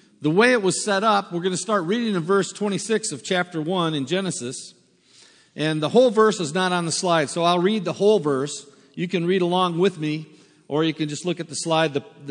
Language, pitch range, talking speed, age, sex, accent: English, 145-195 Hz, 240 wpm, 50-69, male, American